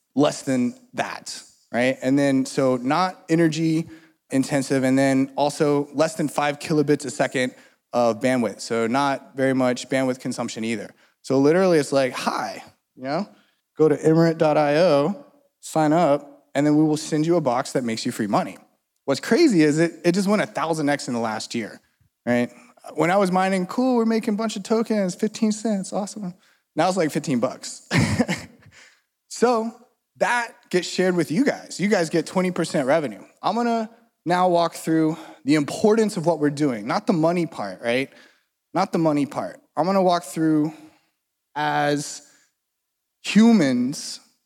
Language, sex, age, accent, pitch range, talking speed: English, male, 20-39, American, 140-190 Hz, 170 wpm